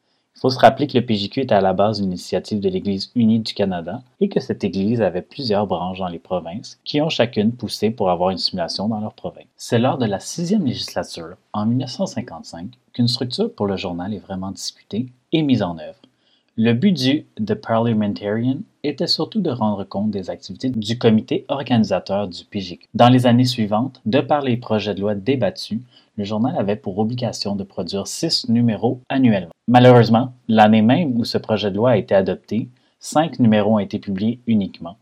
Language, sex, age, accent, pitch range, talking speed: French, male, 30-49, Canadian, 100-130 Hz, 195 wpm